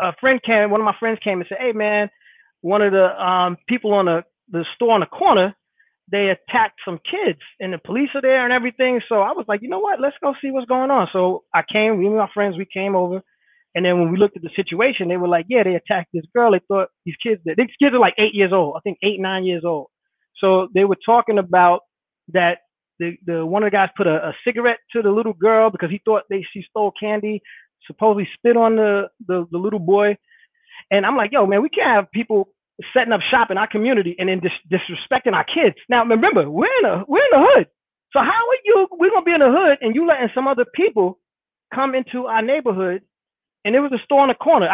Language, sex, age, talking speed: English, male, 20-39, 245 wpm